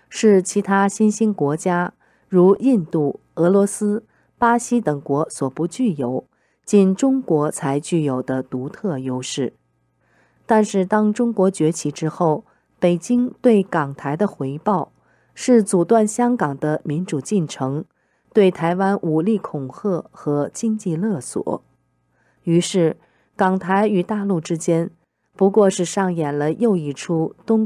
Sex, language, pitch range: female, Chinese, 145-210 Hz